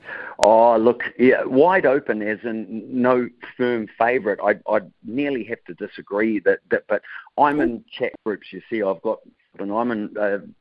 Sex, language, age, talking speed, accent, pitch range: male, English, 50-69, 175 wpm, Australian, 100-120 Hz